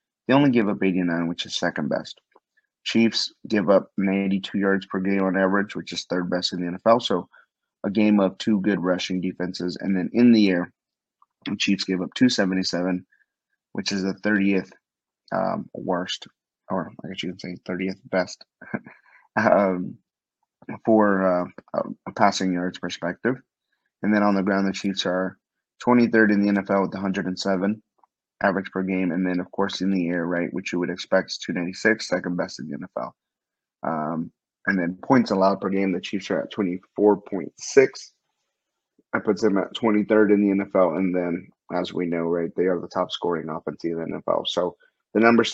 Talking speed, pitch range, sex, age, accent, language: 180 wpm, 90-105 Hz, male, 30-49, American, English